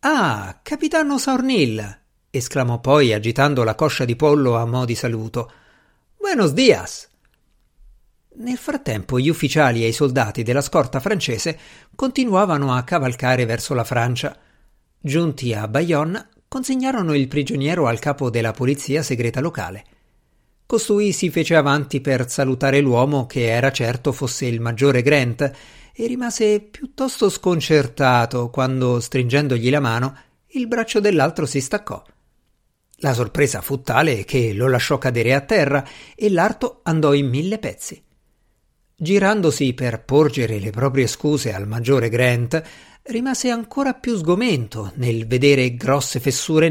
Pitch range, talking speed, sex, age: 125-175 Hz, 135 wpm, male, 50-69